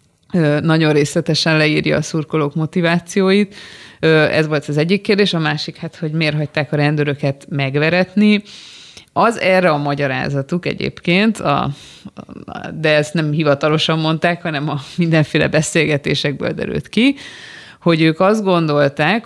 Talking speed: 130 wpm